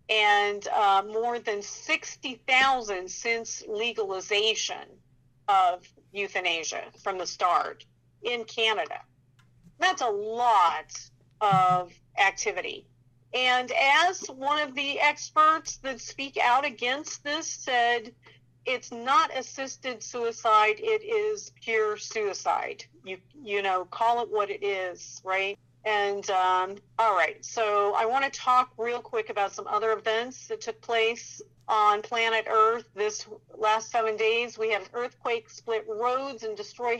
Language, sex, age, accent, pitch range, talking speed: English, female, 50-69, American, 205-260 Hz, 130 wpm